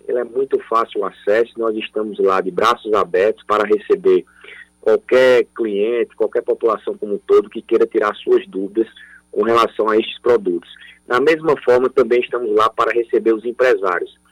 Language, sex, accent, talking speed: Portuguese, male, Brazilian, 170 wpm